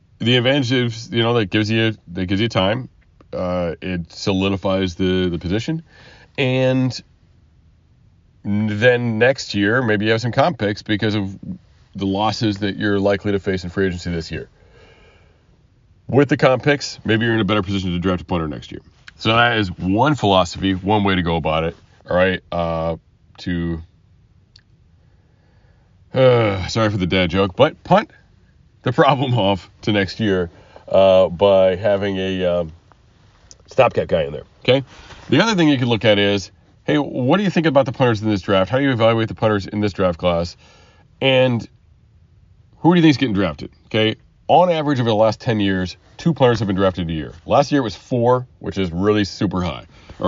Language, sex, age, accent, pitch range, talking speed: English, male, 30-49, American, 95-115 Hz, 190 wpm